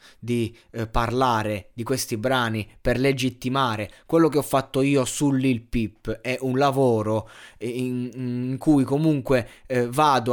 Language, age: Italian, 20-39